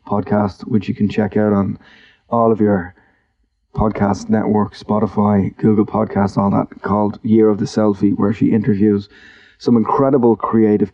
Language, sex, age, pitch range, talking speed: English, male, 20-39, 100-115 Hz, 155 wpm